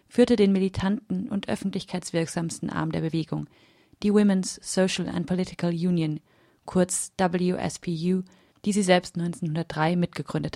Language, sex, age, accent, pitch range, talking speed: German, female, 30-49, German, 175-200 Hz, 120 wpm